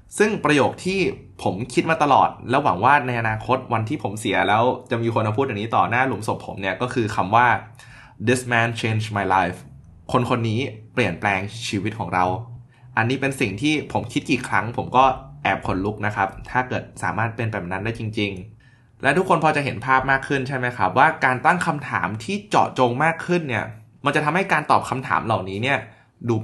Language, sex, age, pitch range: Thai, male, 20-39, 110-140 Hz